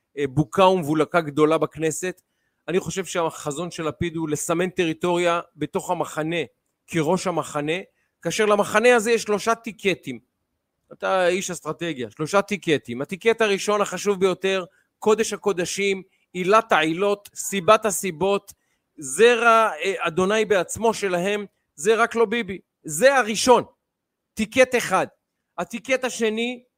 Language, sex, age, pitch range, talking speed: Hebrew, male, 40-59, 170-225 Hz, 115 wpm